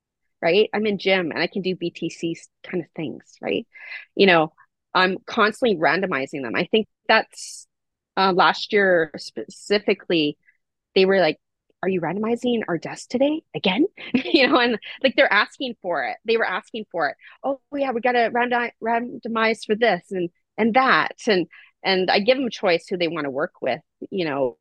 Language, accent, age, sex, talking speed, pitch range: English, American, 30-49, female, 185 wpm, 165-225 Hz